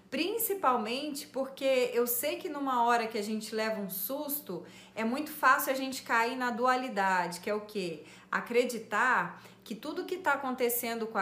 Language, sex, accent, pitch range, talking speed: Portuguese, female, Brazilian, 205-275 Hz, 170 wpm